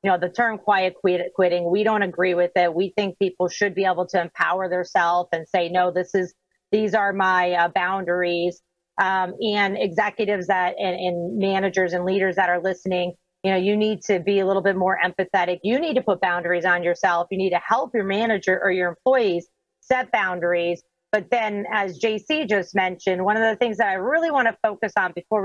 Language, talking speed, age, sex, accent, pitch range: English, 210 wpm, 40-59, female, American, 175-210 Hz